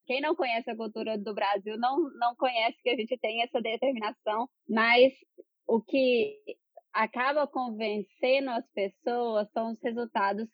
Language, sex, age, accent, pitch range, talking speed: Portuguese, female, 20-39, Brazilian, 215-255 Hz, 150 wpm